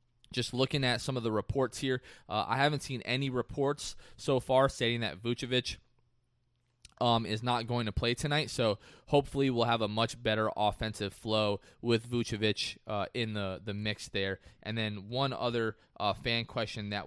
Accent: American